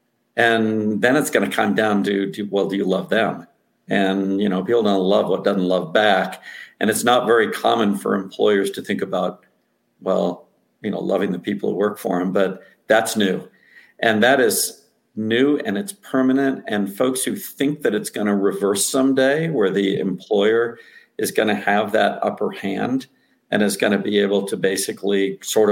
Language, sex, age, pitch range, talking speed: English, male, 50-69, 100-140 Hz, 195 wpm